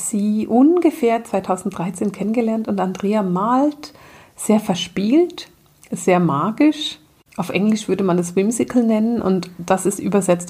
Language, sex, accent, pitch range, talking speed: German, female, German, 180-230 Hz, 125 wpm